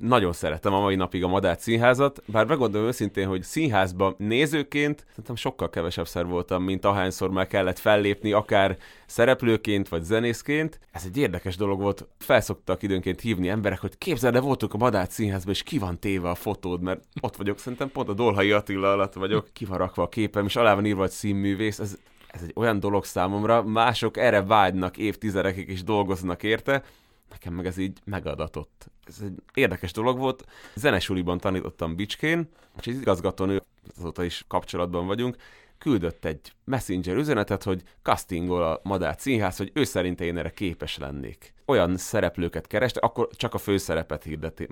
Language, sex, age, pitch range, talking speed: Hungarian, male, 30-49, 90-110 Hz, 170 wpm